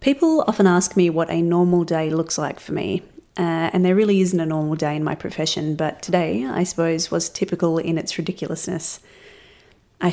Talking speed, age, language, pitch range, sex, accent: 195 wpm, 30-49, English, 165-185 Hz, female, Australian